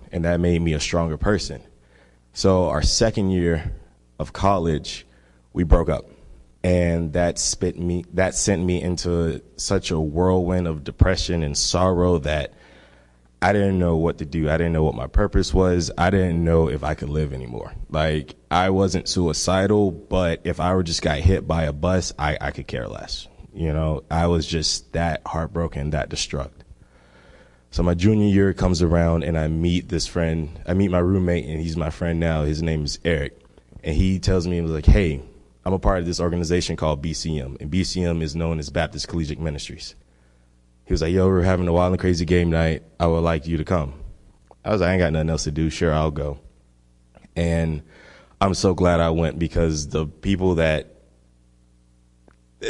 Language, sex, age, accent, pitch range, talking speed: English, male, 20-39, American, 75-90 Hz, 195 wpm